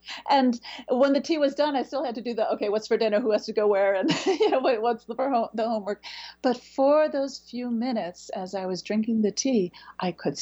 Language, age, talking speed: English, 50-69, 235 wpm